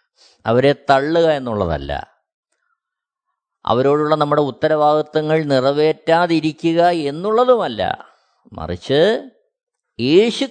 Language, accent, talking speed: Malayalam, native, 55 wpm